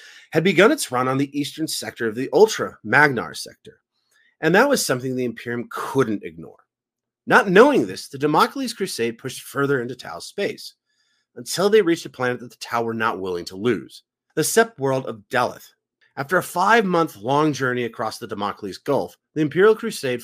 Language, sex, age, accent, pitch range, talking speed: English, male, 30-49, American, 115-175 Hz, 180 wpm